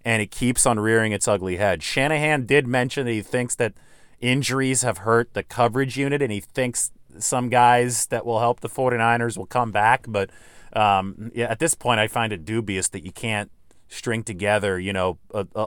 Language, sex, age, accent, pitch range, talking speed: English, male, 30-49, American, 105-130 Hz, 200 wpm